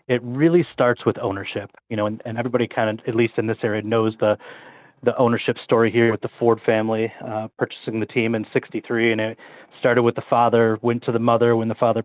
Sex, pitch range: male, 110-125 Hz